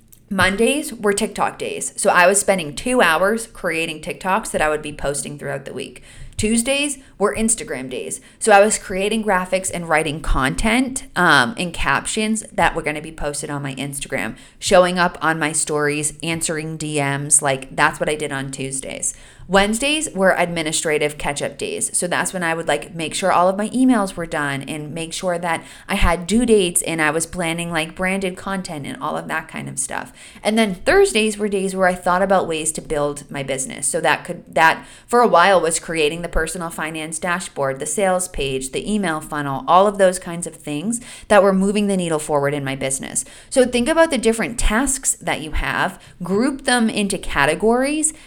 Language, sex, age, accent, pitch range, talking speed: English, female, 30-49, American, 150-210 Hz, 200 wpm